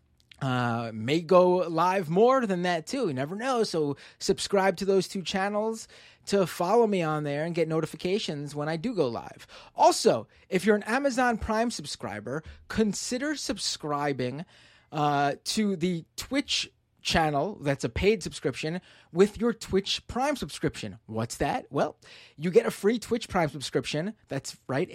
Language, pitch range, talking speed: English, 150-220 Hz, 155 wpm